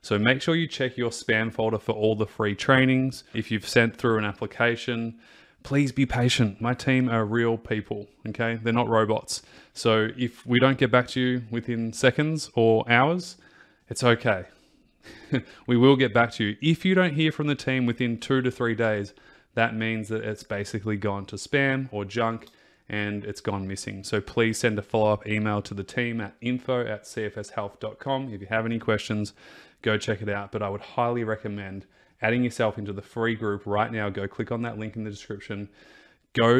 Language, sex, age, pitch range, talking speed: English, male, 20-39, 105-125 Hz, 195 wpm